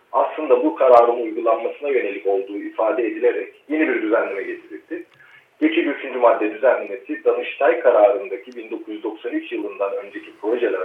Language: Turkish